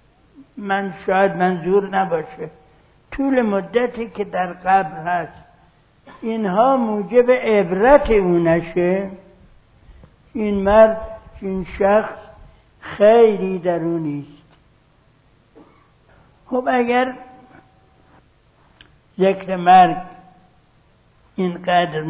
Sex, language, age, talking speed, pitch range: male, Persian, 60-79, 70 wpm, 180-215 Hz